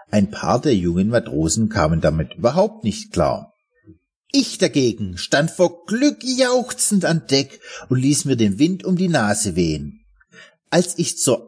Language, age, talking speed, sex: German, 50-69, 155 wpm, male